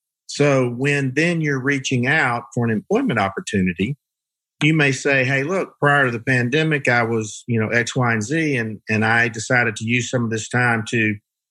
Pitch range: 105-130 Hz